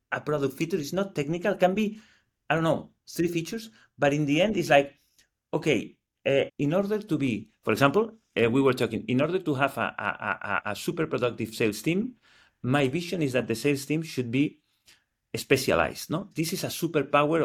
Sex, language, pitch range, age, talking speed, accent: male, English, 130-180 Hz, 40-59, 195 wpm, Spanish